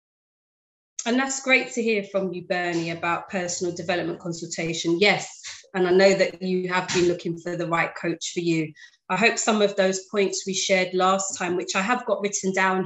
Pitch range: 180-200 Hz